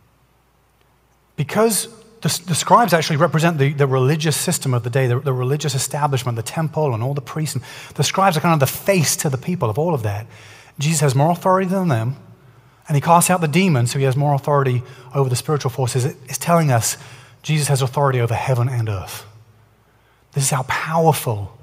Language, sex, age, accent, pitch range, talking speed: English, male, 30-49, British, 130-175 Hz, 200 wpm